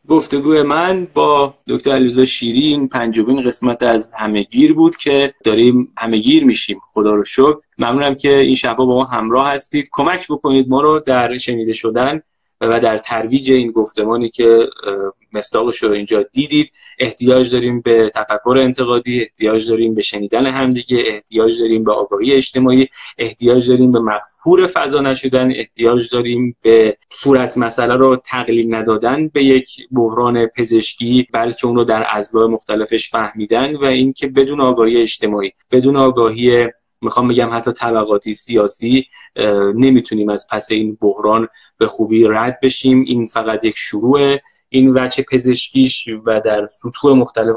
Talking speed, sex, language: 145 wpm, male, Persian